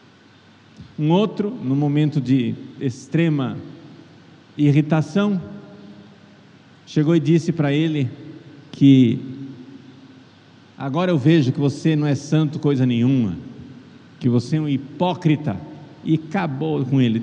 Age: 50-69